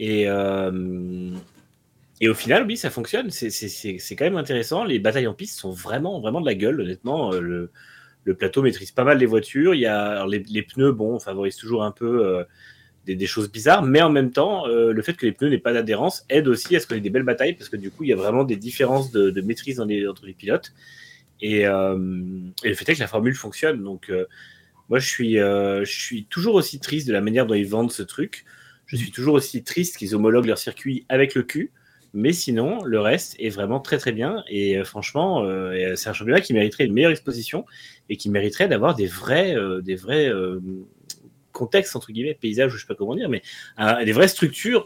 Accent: French